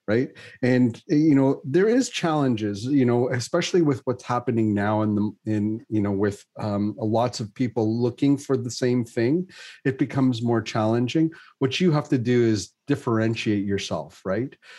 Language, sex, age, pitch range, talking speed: English, male, 30-49, 110-135 Hz, 170 wpm